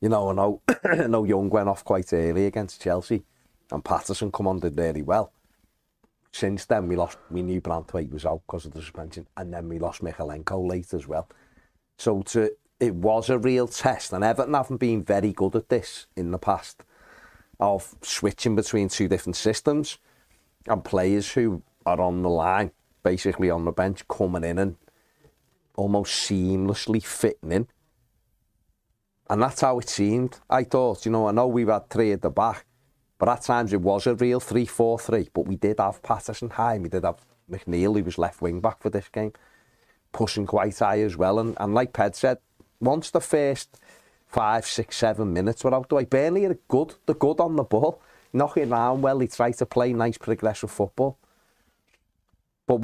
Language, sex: English, male